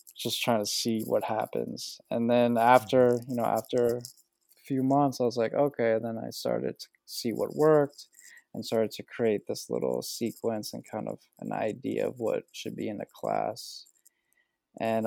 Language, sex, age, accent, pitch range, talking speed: English, male, 20-39, American, 110-125 Hz, 185 wpm